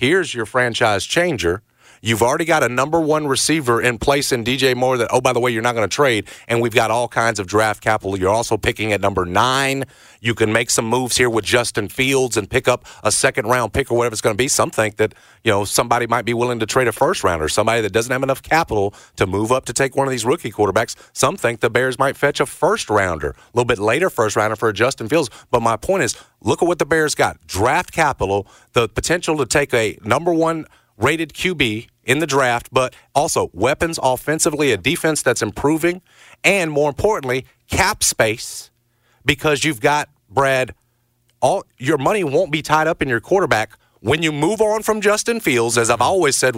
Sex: male